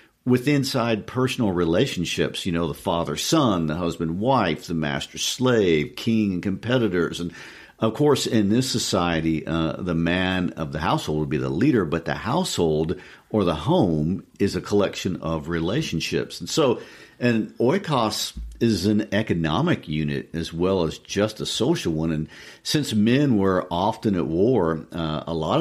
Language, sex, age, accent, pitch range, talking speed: English, male, 50-69, American, 80-110 Hz, 155 wpm